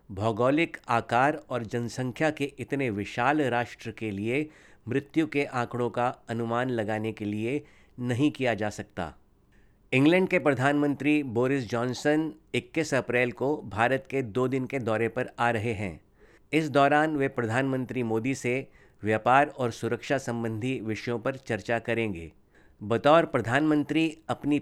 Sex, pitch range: male, 115-140 Hz